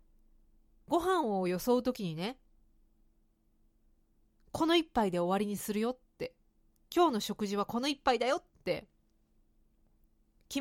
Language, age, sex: Japanese, 30-49, female